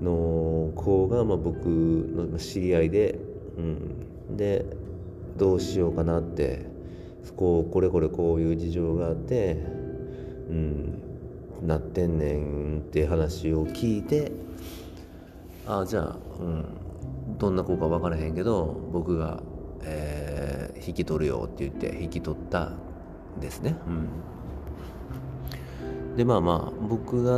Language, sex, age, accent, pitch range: Japanese, male, 40-59, native, 80-95 Hz